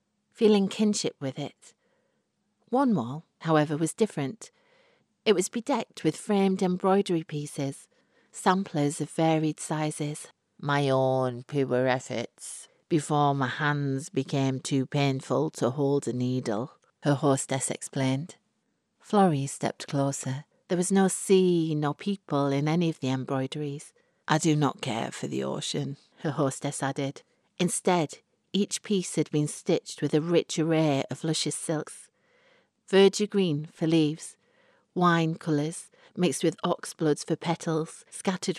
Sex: female